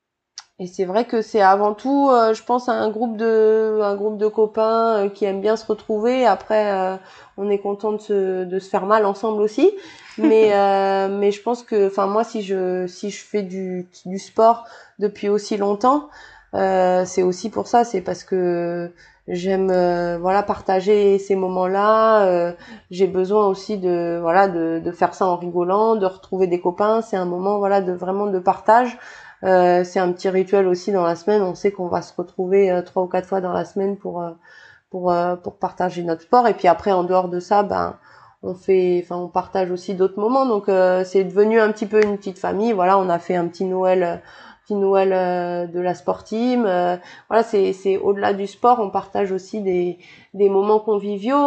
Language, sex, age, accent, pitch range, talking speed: French, female, 20-39, French, 185-215 Hz, 210 wpm